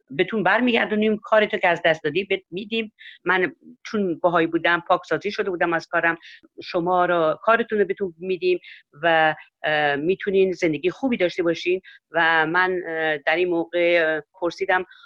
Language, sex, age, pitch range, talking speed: Persian, female, 50-69, 160-200 Hz, 145 wpm